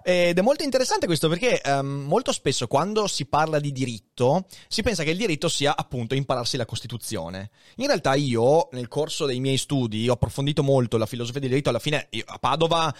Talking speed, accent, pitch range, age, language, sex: 205 wpm, native, 125-160 Hz, 30-49, Italian, male